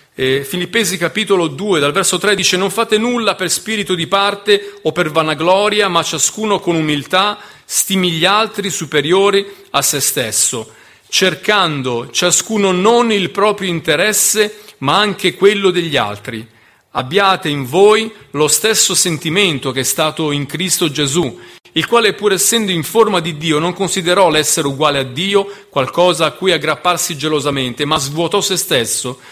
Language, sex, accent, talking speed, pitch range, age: Italian, male, native, 155 wpm, 155-200 Hz, 40-59